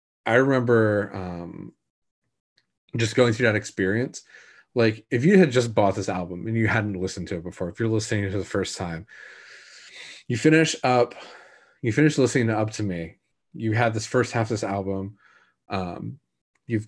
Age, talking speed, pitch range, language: 30-49, 180 wpm, 100-120 Hz, English